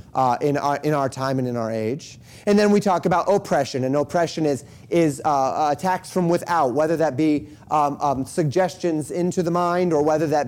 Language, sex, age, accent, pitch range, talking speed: English, male, 30-49, American, 140-180 Hz, 205 wpm